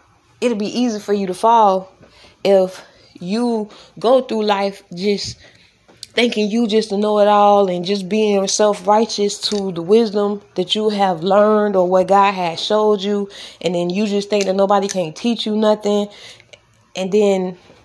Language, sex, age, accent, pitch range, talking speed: English, female, 20-39, American, 185-215 Hz, 170 wpm